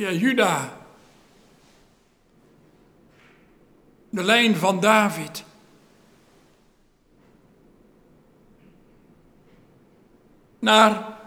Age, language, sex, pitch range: 60-79, Dutch, male, 195-255 Hz